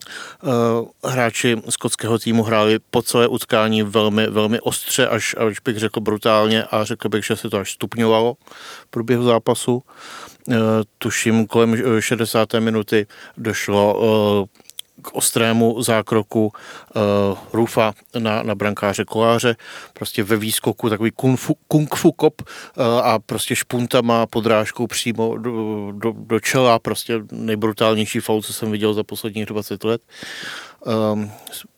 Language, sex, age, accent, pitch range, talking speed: Czech, male, 40-59, native, 105-120 Hz, 140 wpm